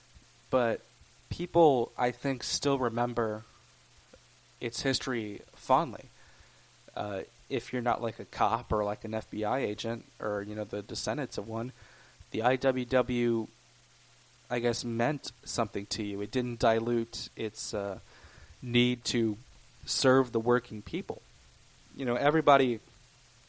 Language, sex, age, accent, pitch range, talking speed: English, male, 20-39, American, 110-125 Hz, 130 wpm